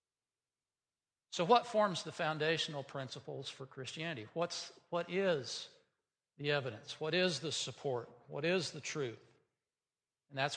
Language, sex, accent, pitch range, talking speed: English, male, American, 135-175 Hz, 125 wpm